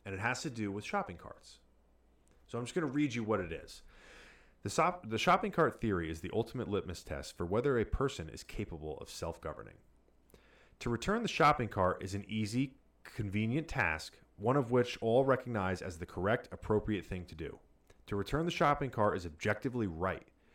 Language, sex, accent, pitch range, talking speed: English, male, American, 90-120 Hz, 195 wpm